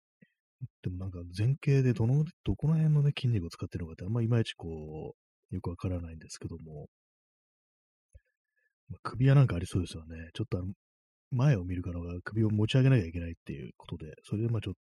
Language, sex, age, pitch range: Japanese, male, 30-49, 85-115 Hz